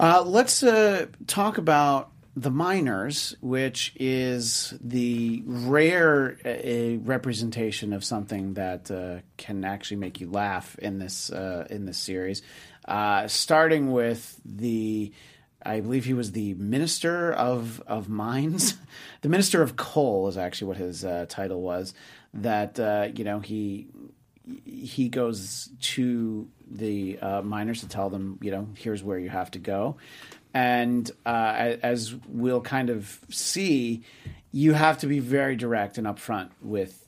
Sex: male